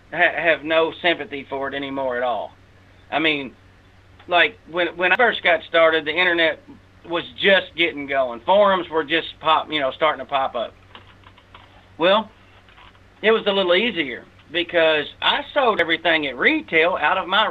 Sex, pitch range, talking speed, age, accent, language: male, 135-205 Hz, 165 wpm, 40-59, American, English